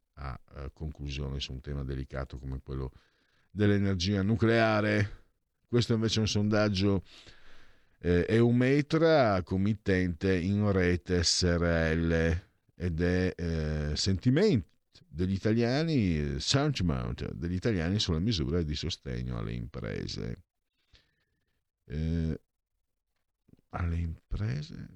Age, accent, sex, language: 50-69, native, male, Italian